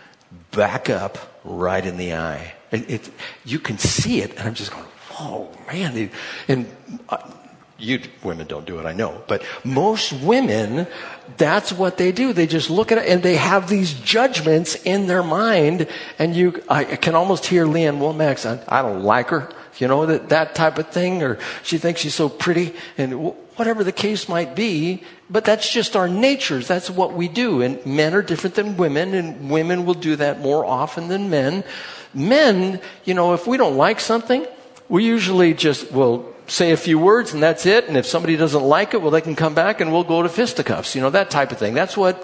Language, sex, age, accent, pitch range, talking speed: English, male, 60-79, American, 125-185 Hz, 210 wpm